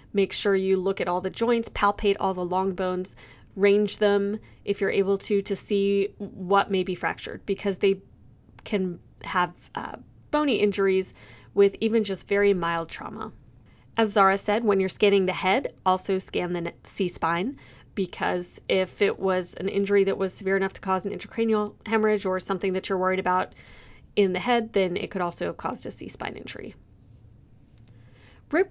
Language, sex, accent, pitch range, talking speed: English, female, American, 185-205 Hz, 175 wpm